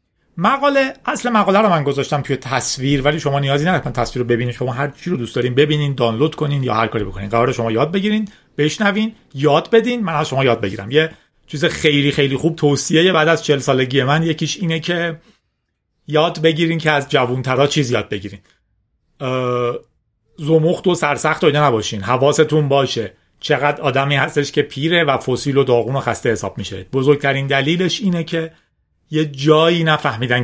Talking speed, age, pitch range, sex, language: 175 wpm, 40-59, 130-175 Hz, male, Persian